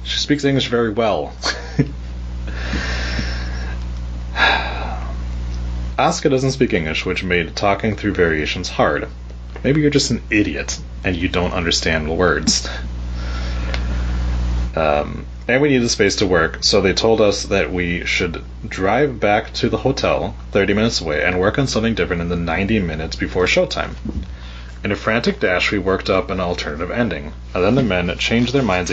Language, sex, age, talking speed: English, male, 30-49, 155 wpm